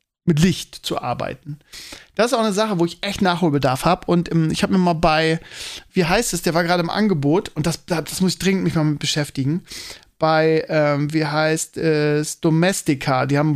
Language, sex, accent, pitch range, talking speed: German, male, German, 150-180 Hz, 205 wpm